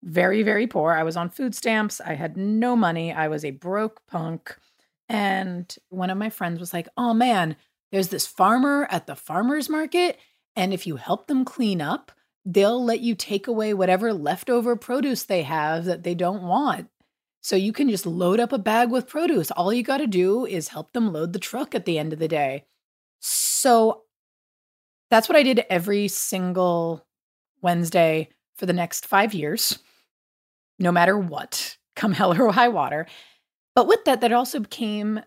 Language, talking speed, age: English, 185 wpm, 30-49